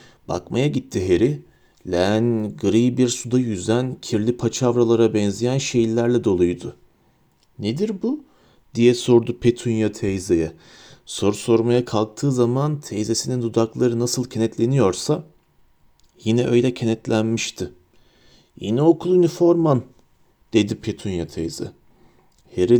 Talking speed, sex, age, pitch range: 95 wpm, male, 40-59, 110-140 Hz